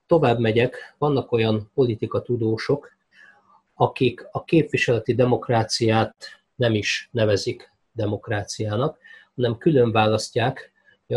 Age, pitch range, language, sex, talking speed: 30-49, 110-130 Hz, Hungarian, male, 90 wpm